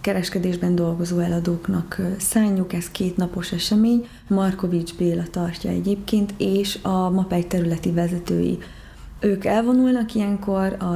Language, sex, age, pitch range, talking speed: Hungarian, female, 30-49, 180-200 Hz, 115 wpm